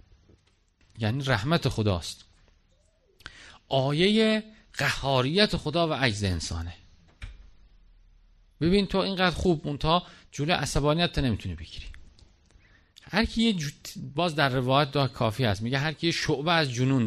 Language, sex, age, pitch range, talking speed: Persian, male, 50-69, 95-160 Hz, 110 wpm